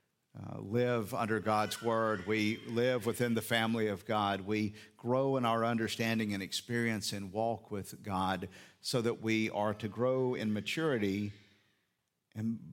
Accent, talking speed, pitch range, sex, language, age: American, 150 wpm, 100-120 Hz, male, English, 50-69